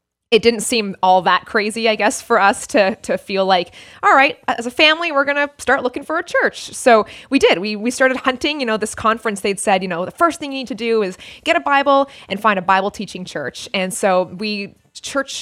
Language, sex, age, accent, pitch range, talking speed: English, female, 20-39, American, 185-235 Hz, 240 wpm